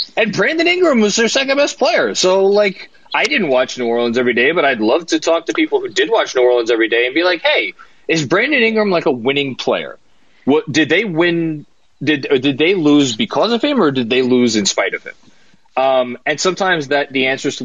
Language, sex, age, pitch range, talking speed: English, male, 20-39, 130-185 Hz, 235 wpm